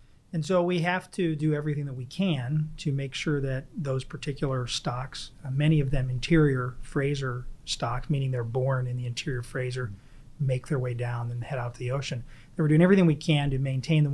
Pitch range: 130-160 Hz